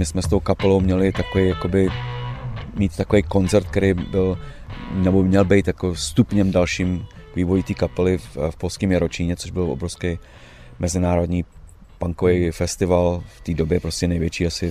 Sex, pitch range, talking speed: male, 85-95 Hz, 155 wpm